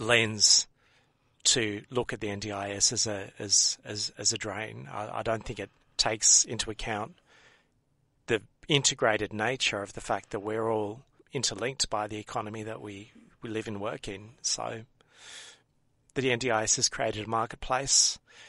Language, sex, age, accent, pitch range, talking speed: English, male, 30-49, Australian, 105-125 Hz, 155 wpm